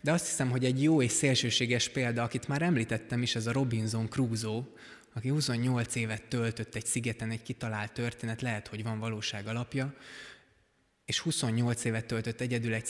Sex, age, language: male, 20-39, Hungarian